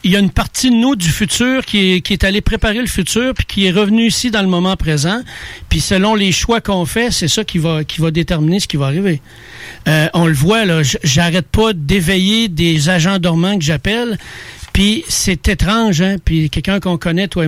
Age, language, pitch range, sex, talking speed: 60-79, French, 165-225 Hz, male, 225 wpm